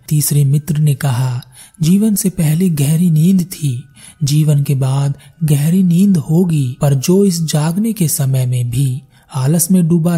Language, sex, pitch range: Hindi, male, 135-175 Hz